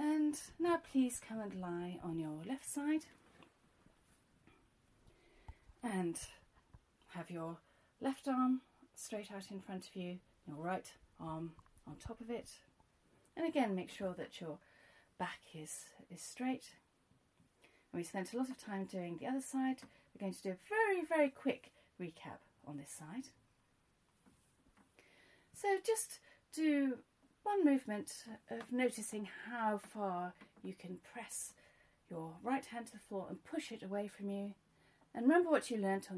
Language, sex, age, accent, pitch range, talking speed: English, female, 40-59, British, 160-255 Hz, 150 wpm